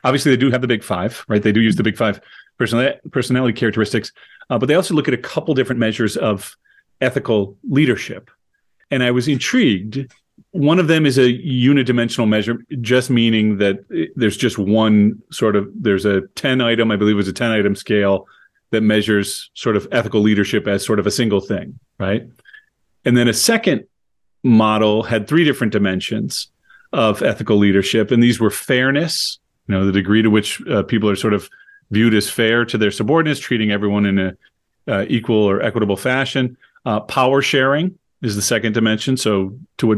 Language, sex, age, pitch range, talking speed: English, male, 40-59, 105-125 Hz, 190 wpm